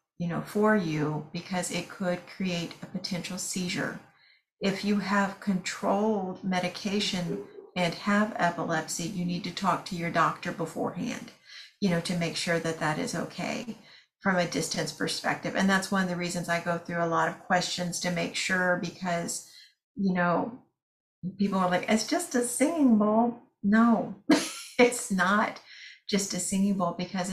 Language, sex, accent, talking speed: English, female, American, 165 wpm